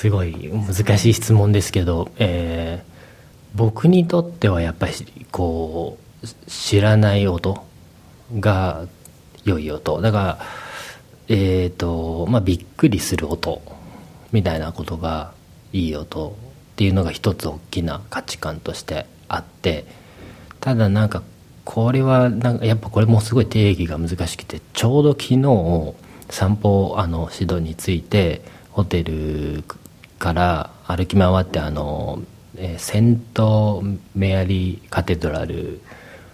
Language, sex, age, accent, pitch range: Japanese, male, 40-59, native, 85-110 Hz